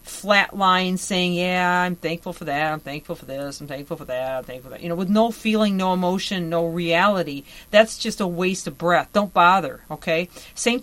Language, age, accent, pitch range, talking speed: English, 40-59, American, 170-205 Hz, 215 wpm